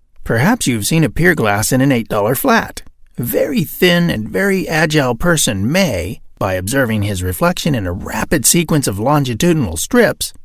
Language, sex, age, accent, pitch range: Korean, male, 50-69, American, 110-185 Hz